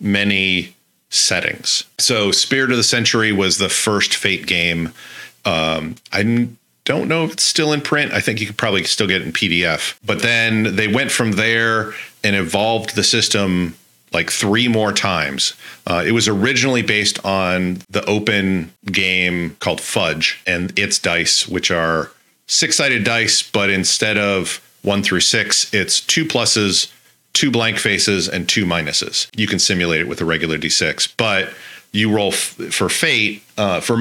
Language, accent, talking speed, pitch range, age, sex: English, American, 160 wpm, 85-110 Hz, 40-59, male